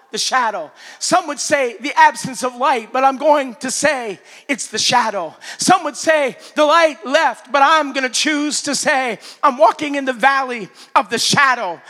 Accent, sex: American, male